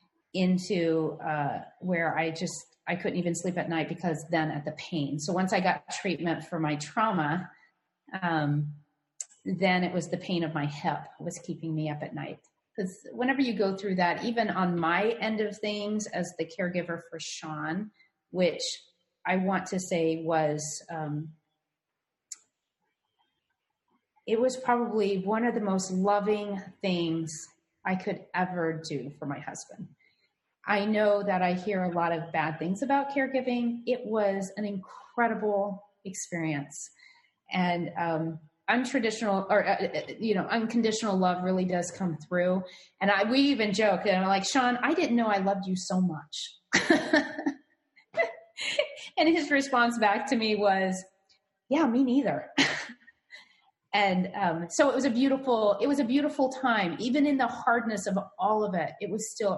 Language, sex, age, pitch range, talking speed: English, female, 30-49, 170-225 Hz, 160 wpm